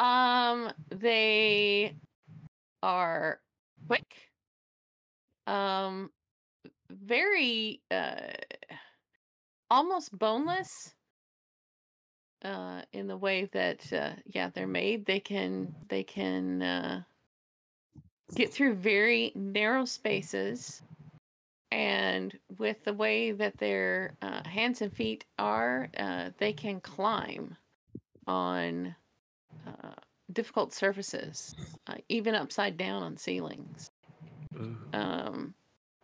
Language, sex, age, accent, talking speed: English, female, 30-49, American, 90 wpm